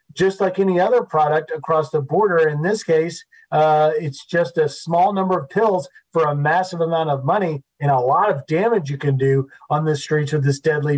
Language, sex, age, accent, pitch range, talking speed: English, male, 40-59, American, 155-185 Hz, 215 wpm